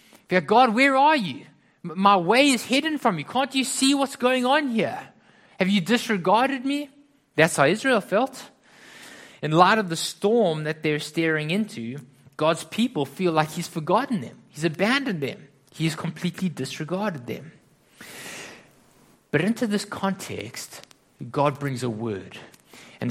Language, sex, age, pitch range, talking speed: English, male, 20-39, 160-245 Hz, 150 wpm